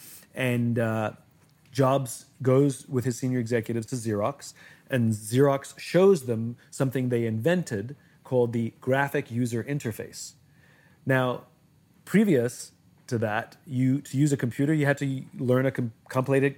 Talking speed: 140 wpm